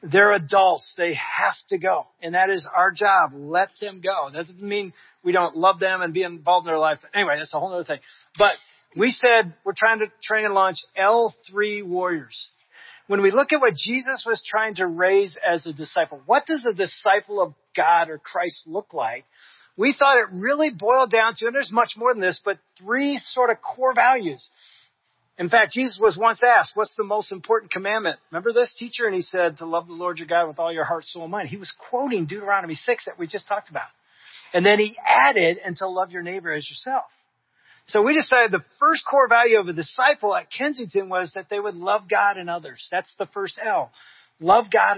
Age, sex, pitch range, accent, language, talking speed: 40-59, male, 175-225 Hz, American, English, 215 wpm